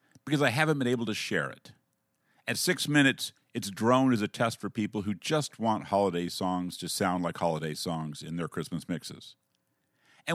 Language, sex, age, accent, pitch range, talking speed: English, male, 50-69, American, 90-135 Hz, 190 wpm